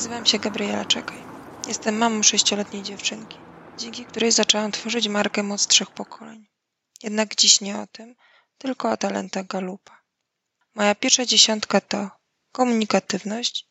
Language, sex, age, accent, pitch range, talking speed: Polish, female, 20-39, native, 200-230 Hz, 130 wpm